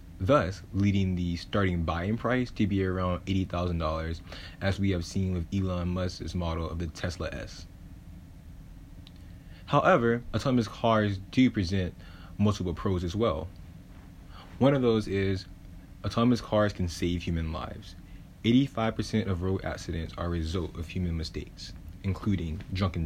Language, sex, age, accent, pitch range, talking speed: English, male, 30-49, American, 85-100 Hz, 140 wpm